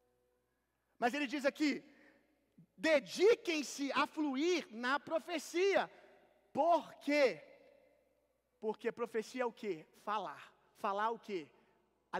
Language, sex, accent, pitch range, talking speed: Gujarati, male, Brazilian, 240-325 Hz, 105 wpm